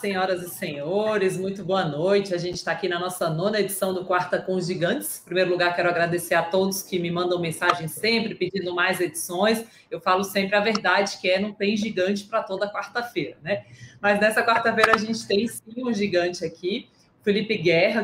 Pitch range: 175-205 Hz